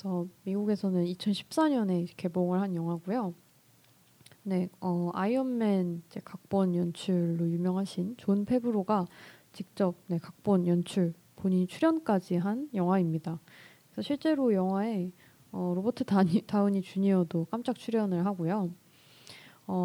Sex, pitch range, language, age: female, 175-215 Hz, Korean, 20-39